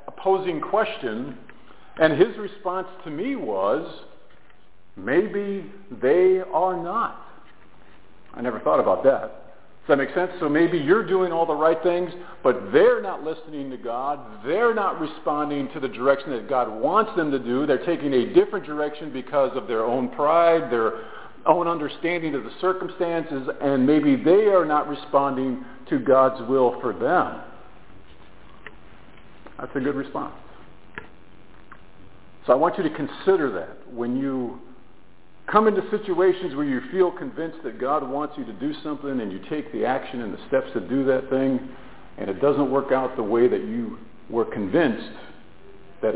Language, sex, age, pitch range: English, male, 50-69, 135-185 Hz